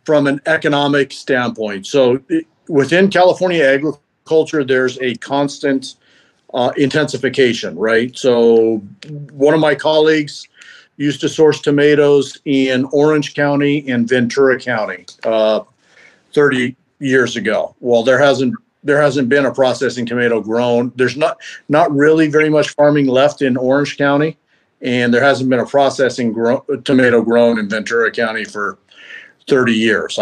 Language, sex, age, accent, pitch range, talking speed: English, male, 50-69, American, 120-145 Hz, 140 wpm